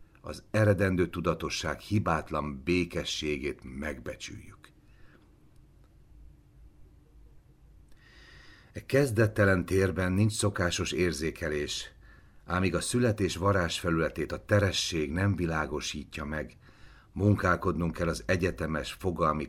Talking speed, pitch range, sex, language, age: 85 wpm, 80-100 Hz, male, Hungarian, 60-79